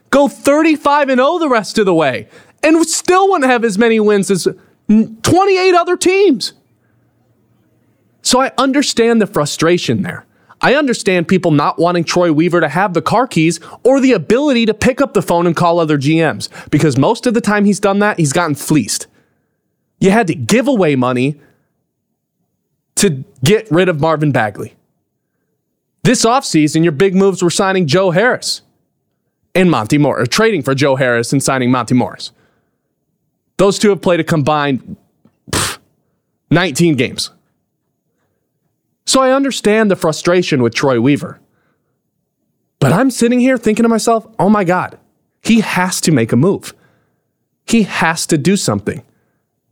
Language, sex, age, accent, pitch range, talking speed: English, male, 20-39, American, 160-240 Hz, 155 wpm